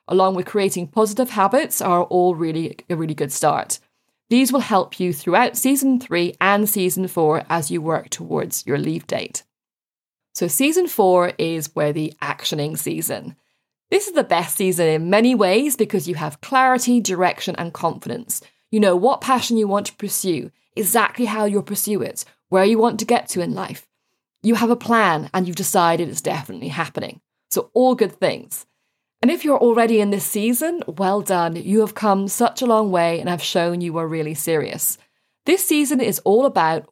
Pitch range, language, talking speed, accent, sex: 170-230 Hz, English, 190 wpm, British, female